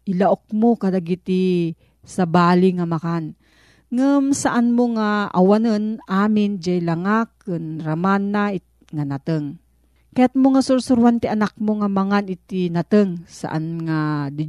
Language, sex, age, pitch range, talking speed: Filipino, female, 40-59, 170-225 Hz, 140 wpm